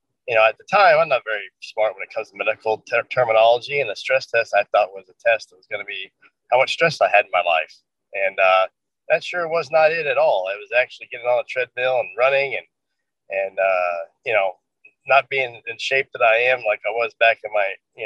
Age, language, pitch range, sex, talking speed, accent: 30-49, English, 110-140 Hz, male, 250 wpm, American